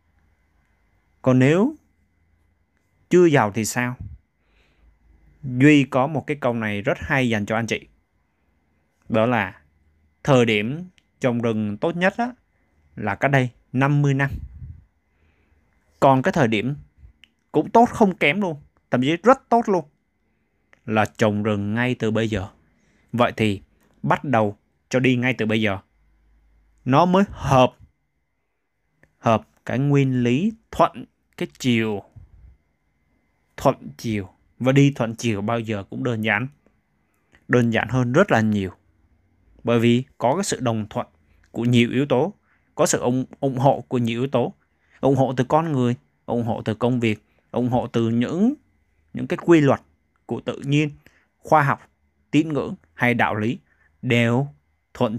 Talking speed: 150 wpm